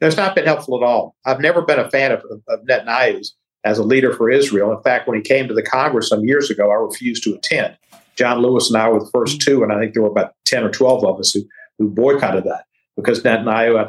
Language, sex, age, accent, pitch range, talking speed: English, male, 50-69, American, 110-145 Hz, 260 wpm